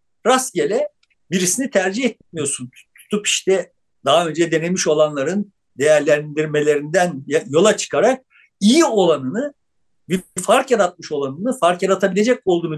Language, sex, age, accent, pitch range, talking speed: Turkish, male, 50-69, native, 175-245 Hz, 105 wpm